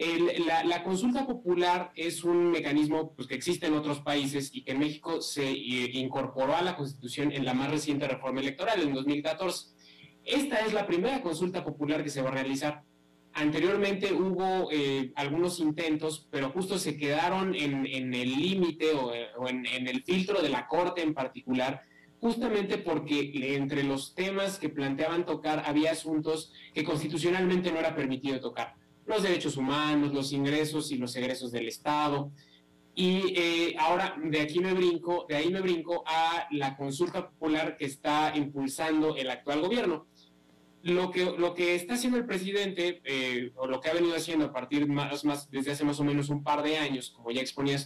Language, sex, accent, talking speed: Spanish, male, Mexican, 180 wpm